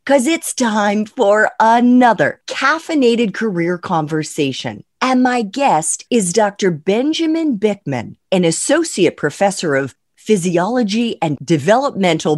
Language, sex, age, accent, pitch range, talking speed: English, female, 40-59, American, 170-255 Hz, 105 wpm